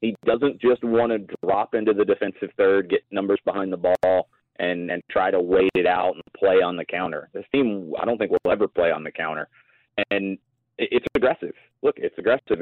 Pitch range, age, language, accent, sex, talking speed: 105-165 Hz, 30-49, English, American, male, 210 wpm